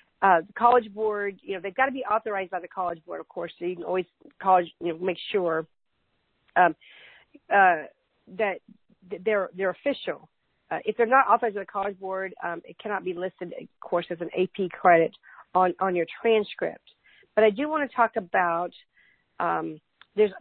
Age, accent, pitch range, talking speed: 50-69, American, 185-220 Hz, 190 wpm